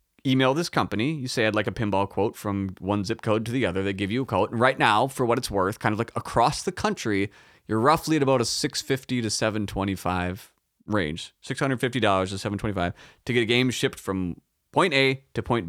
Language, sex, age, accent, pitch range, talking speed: English, male, 30-49, American, 105-130 Hz, 215 wpm